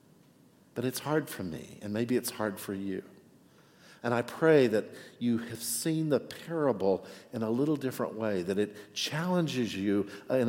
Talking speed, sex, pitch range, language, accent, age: 170 wpm, male, 100-130 Hz, English, American, 60-79